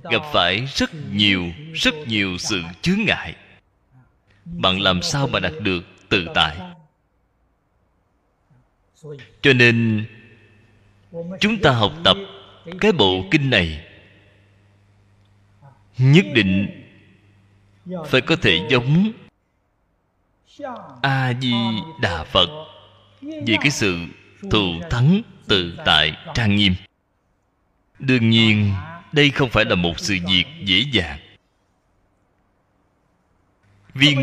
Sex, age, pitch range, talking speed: male, 20-39, 100-145 Hz, 100 wpm